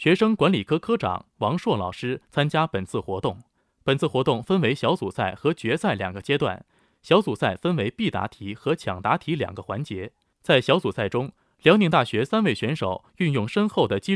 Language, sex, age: Chinese, male, 20-39